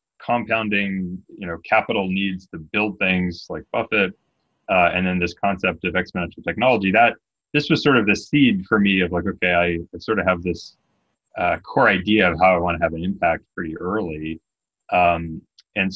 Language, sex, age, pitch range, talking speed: English, male, 30-49, 85-105 Hz, 190 wpm